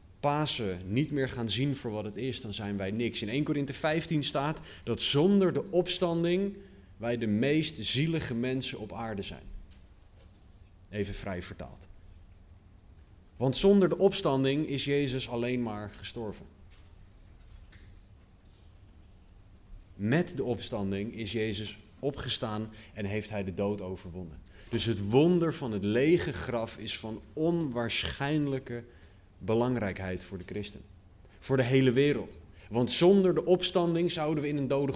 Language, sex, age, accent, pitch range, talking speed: Dutch, male, 30-49, Dutch, 95-135 Hz, 135 wpm